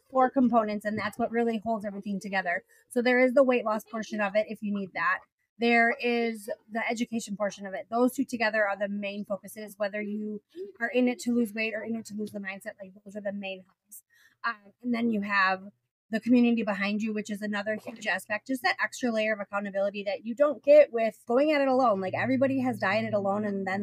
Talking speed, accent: 230 wpm, American